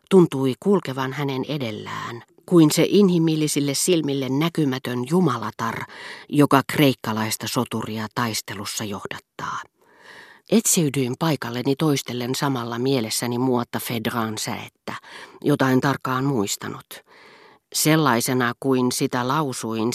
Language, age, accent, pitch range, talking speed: Finnish, 40-59, native, 120-160 Hz, 95 wpm